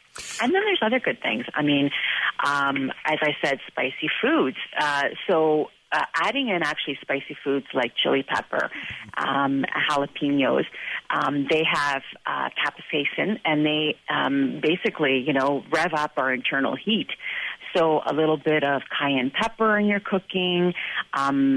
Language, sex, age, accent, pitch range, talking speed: English, female, 40-59, American, 140-195 Hz, 150 wpm